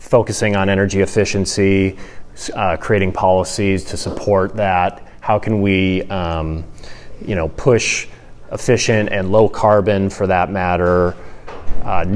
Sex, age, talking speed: male, 30-49, 125 wpm